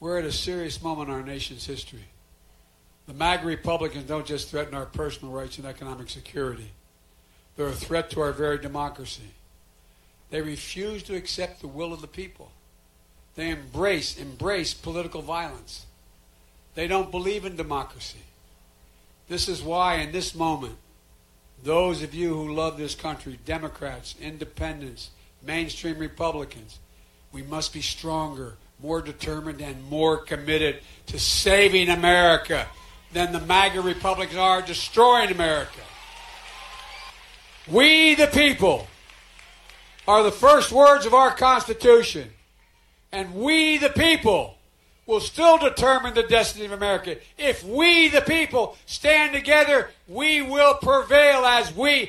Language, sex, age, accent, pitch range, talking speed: English, male, 60-79, American, 135-205 Hz, 130 wpm